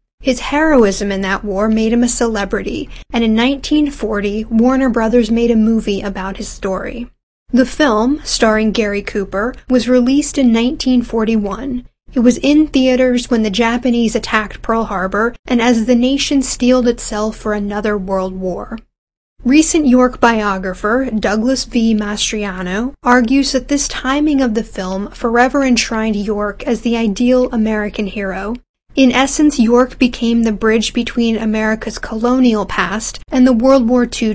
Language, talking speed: English, 150 wpm